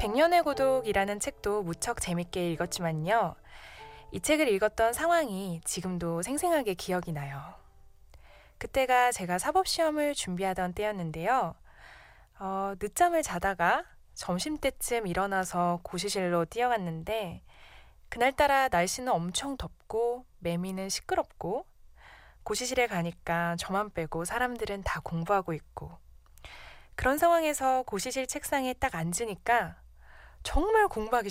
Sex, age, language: female, 20-39, Korean